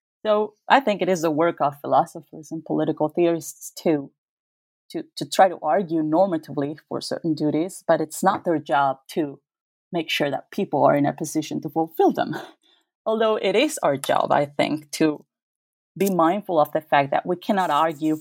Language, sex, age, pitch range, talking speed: English, female, 30-49, 150-180 Hz, 180 wpm